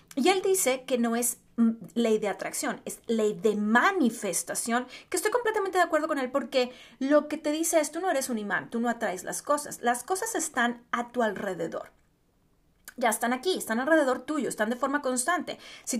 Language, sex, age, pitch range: Spanish, female, 30-49, 230-305 Hz